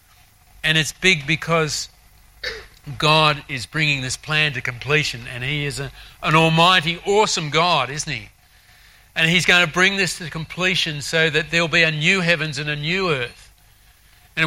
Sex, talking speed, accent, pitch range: male, 165 wpm, Australian, 125-175 Hz